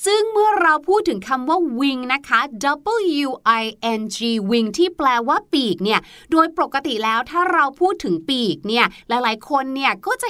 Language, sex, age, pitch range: Thai, female, 30-49, 235-345 Hz